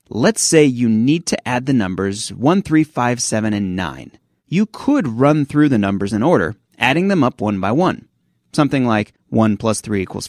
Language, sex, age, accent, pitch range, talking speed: English, male, 30-49, American, 105-145 Hz, 200 wpm